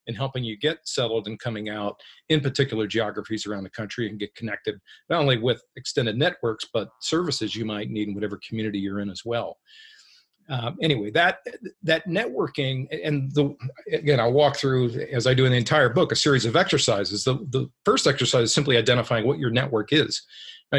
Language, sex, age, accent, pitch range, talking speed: English, male, 40-59, American, 115-150 Hz, 195 wpm